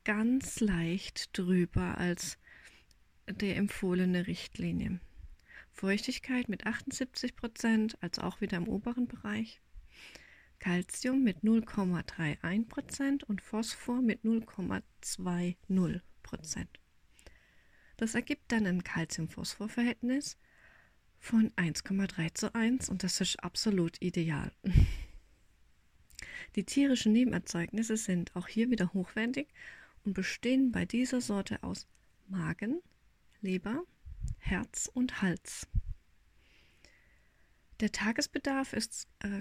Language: German